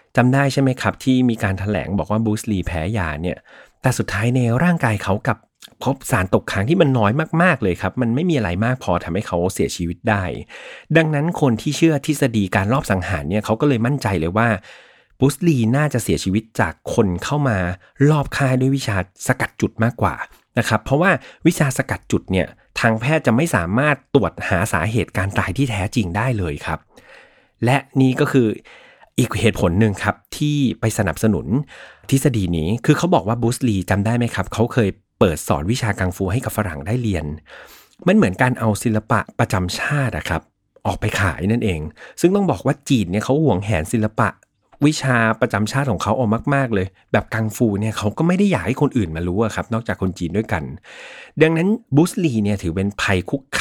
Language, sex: Thai, male